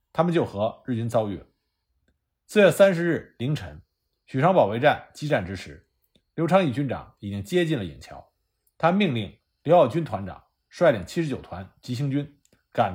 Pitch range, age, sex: 95-160 Hz, 50-69, male